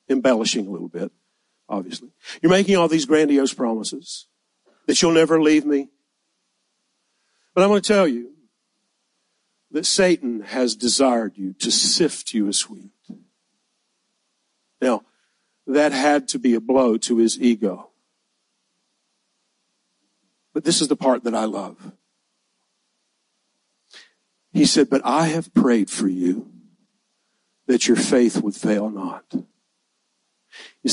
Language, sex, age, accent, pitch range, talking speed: English, male, 50-69, American, 130-190 Hz, 125 wpm